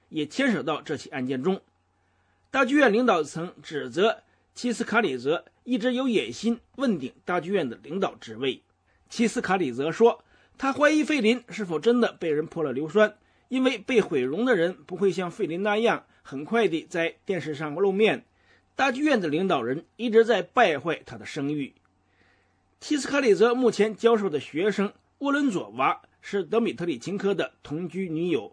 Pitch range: 165-235 Hz